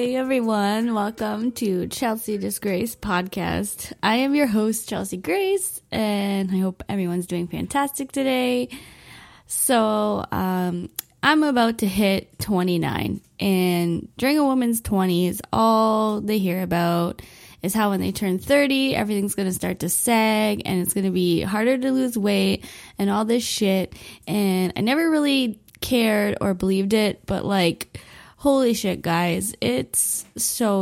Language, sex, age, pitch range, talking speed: English, female, 20-39, 185-230 Hz, 145 wpm